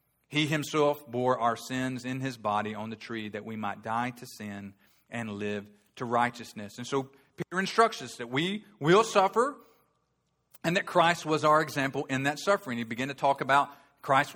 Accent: American